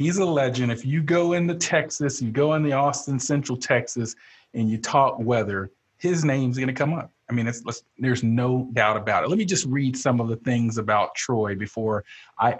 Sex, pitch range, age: male, 110-145 Hz, 40-59